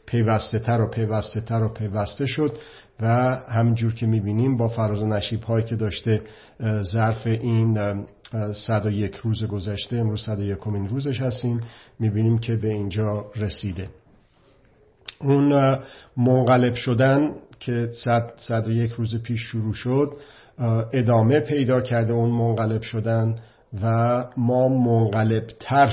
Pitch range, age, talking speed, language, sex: 110-120 Hz, 50-69, 125 wpm, Persian, male